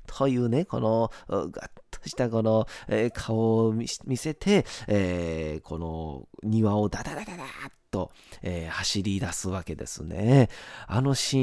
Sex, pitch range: male, 90-150 Hz